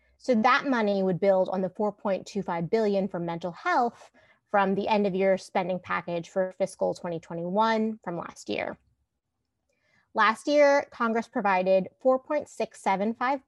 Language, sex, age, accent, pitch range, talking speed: English, female, 30-49, American, 180-235 Hz, 135 wpm